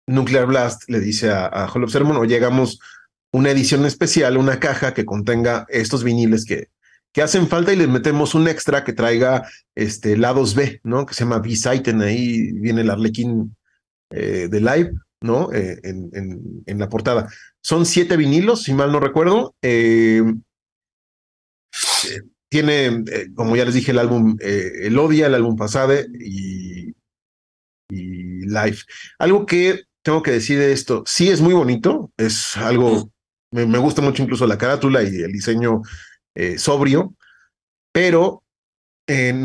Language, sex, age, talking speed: Spanish, male, 40-59, 160 wpm